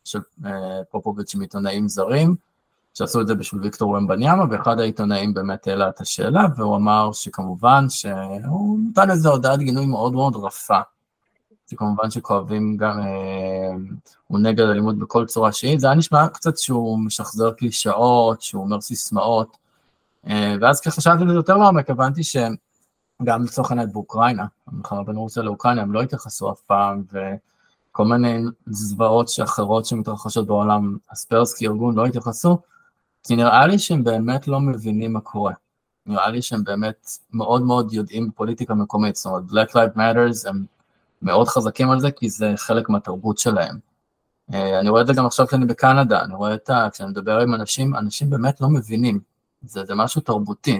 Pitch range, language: 105-135 Hz, Hebrew